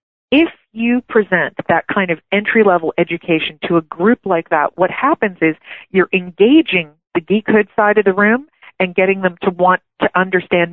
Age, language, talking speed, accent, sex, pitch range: 40-59, English, 175 wpm, American, female, 175-235 Hz